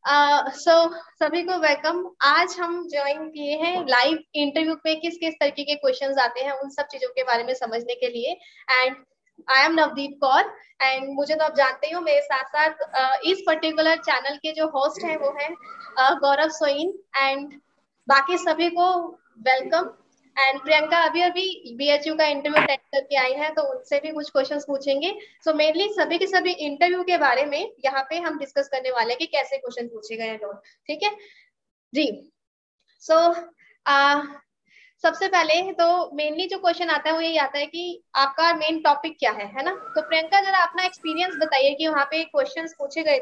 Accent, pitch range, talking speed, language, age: native, 275-335 Hz, 170 wpm, Hindi, 20-39